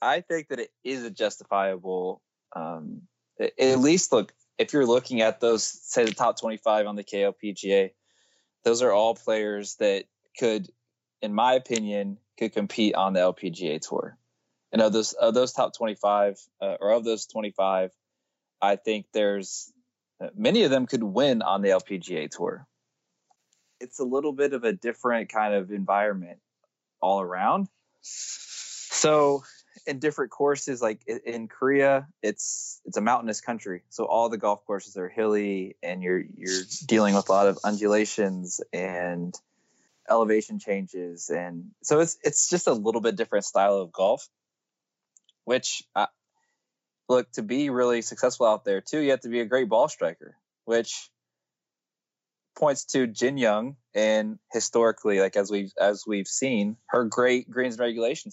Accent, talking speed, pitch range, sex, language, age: American, 155 wpm, 100-125 Hz, male, English, 20-39